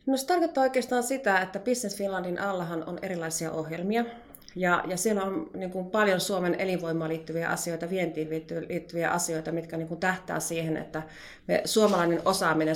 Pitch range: 165-200 Hz